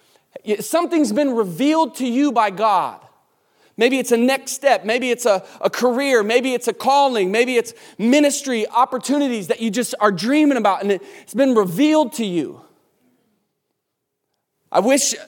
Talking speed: 155 wpm